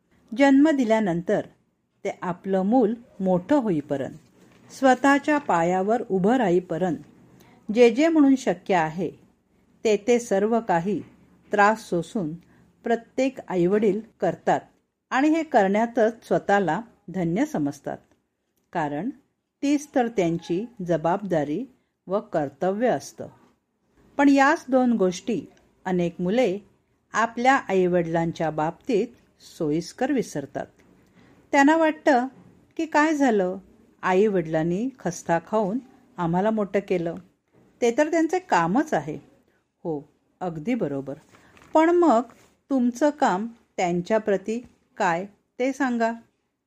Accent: native